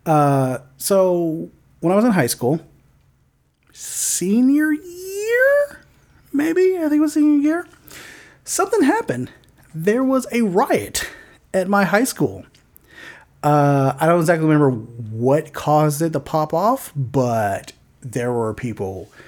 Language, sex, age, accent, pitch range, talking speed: English, male, 30-49, American, 120-185 Hz, 130 wpm